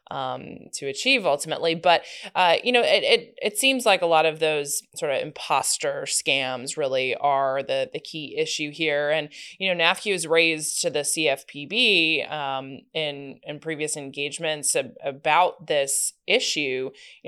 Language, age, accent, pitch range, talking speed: English, 20-39, American, 140-185 Hz, 165 wpm